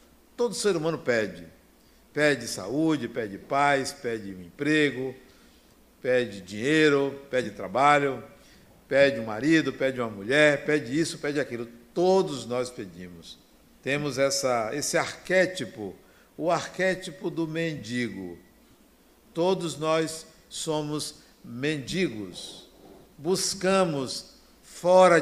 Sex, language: male, Portuguese